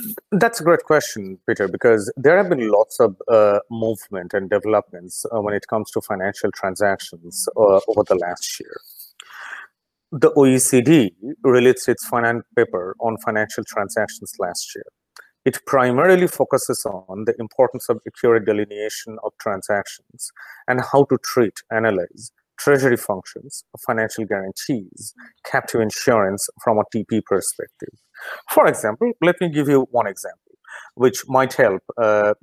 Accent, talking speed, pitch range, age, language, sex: Indian, 140 wpm, 110-155 Hz, 30-49, English, male